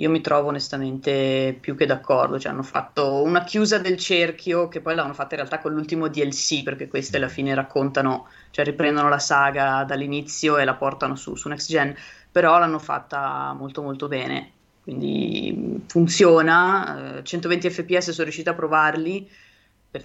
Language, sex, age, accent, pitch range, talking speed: Italian, female, 20-39, native, 140-170 Hz, 165 wpm